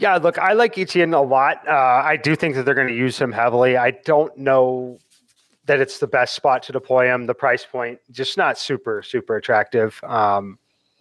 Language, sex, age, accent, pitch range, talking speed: English, male, 30-49, American, 125-155 Hz, 205 wpm